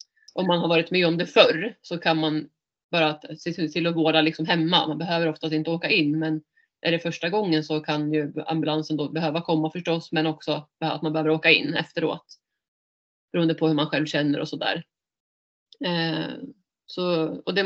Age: 30-49